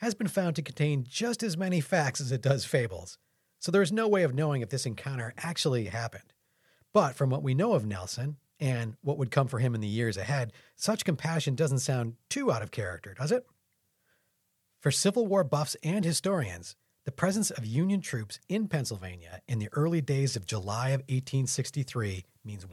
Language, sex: English, male